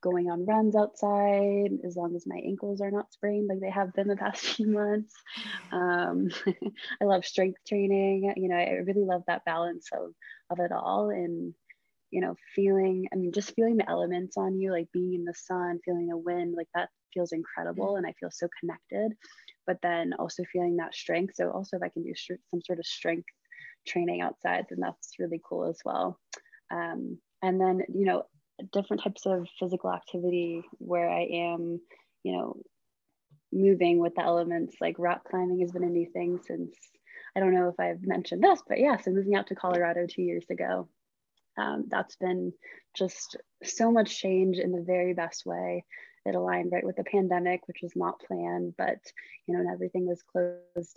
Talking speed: 190 wpm